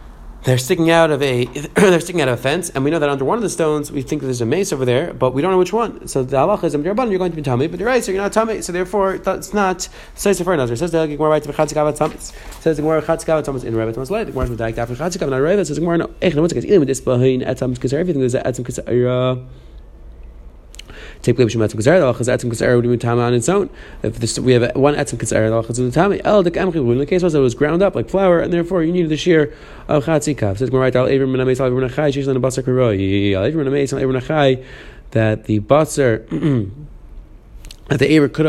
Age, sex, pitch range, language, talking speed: 20-39, male, 115-160 Hz, English, 155 wpm